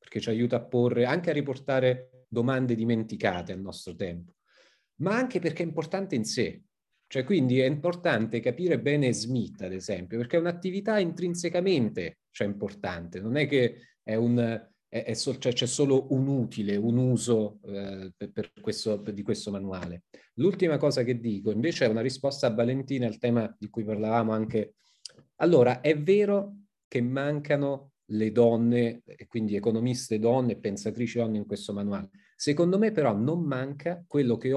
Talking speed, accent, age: 165 wpm, native, 30-49